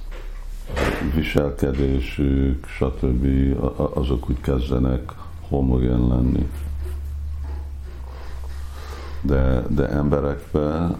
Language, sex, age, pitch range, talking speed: Hungarian, male, 60-79, 65-75 Hz, 55 wpm